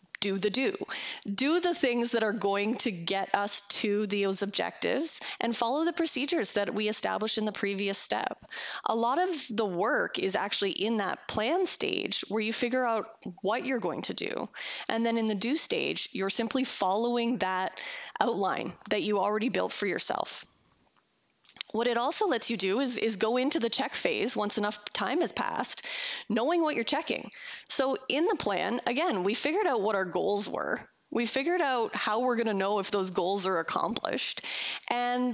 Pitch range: 205-280 Hz